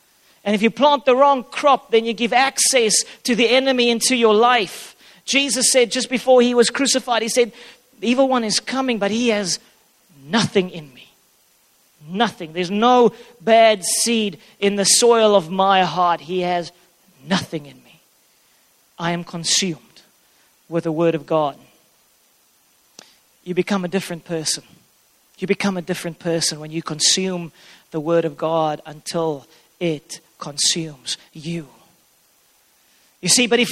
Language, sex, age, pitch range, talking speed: English, male, 40-59, 175-240 Hz, 155 wpm